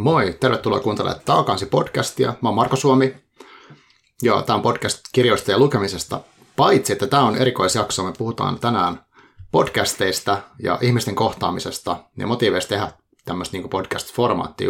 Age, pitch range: 30-49, 100-130 Hz